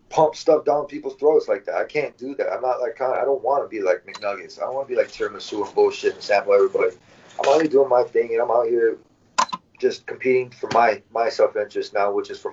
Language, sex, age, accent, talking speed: English, male, 30-49, American, 255 wpm